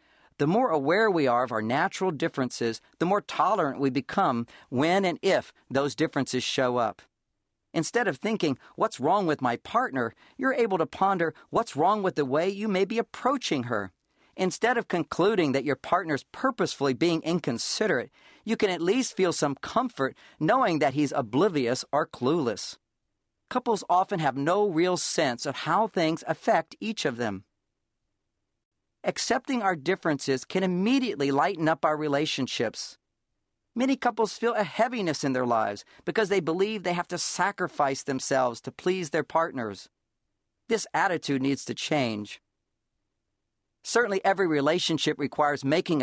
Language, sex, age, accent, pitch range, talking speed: English, male, 50-69, American, 140-195 Hz, 155 wpm